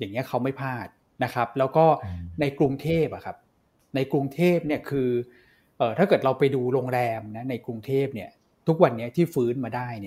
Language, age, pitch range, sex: Thai, 20-39, 120-150 Hz, male